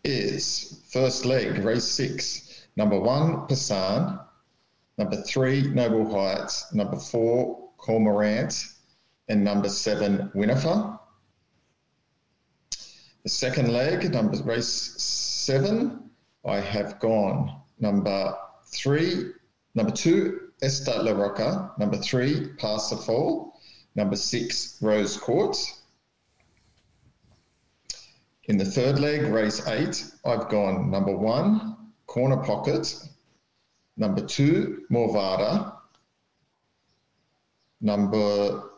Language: English